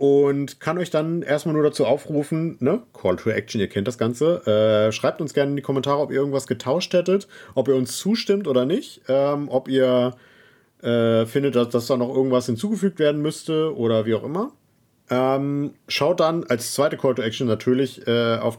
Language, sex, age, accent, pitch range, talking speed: German, male, 40-59, German, 120-150 Hz, 200 wpm